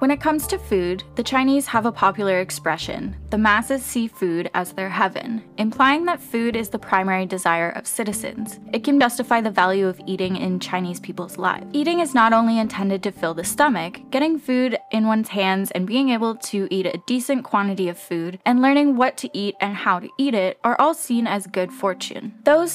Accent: American